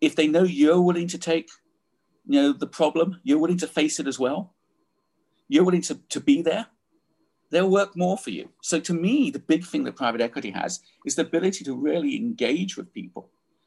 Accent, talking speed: British, 205 wpm